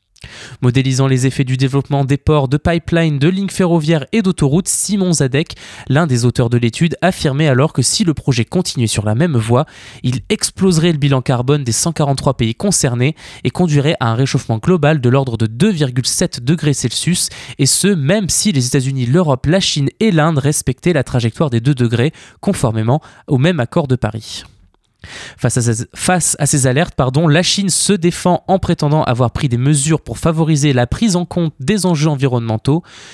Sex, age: male, 20-39